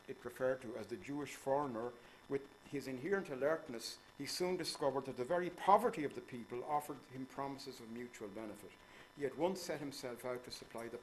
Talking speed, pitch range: 190 wpm, 105-135 Hz